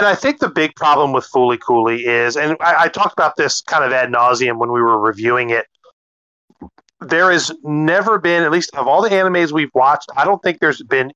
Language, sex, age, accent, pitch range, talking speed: English, male, 30-49, American, 120-145 Hz, 225 wpm